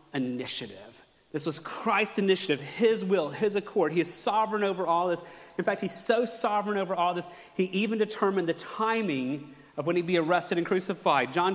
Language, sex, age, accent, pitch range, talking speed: English, male, 30-49, American, 150-195 Hz, 185 wpm